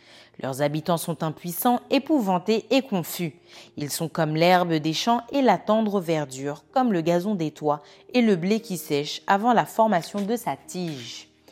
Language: French